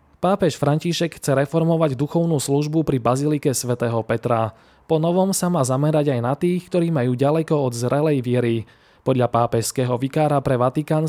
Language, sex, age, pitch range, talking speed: Slovak, male, 20-39, 125-155 Hz, 155 wpm